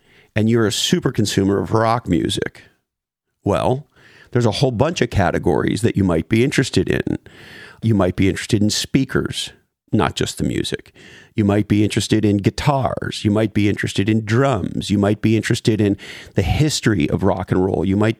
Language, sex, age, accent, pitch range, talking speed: English, male, 40-59, American, 100-120 Hz, 185 wpm